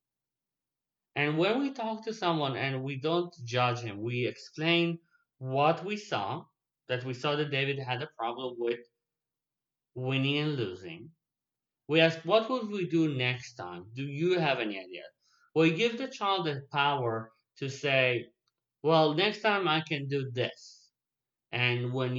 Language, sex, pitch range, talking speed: English, male, 130-165 Hz, 155 wpm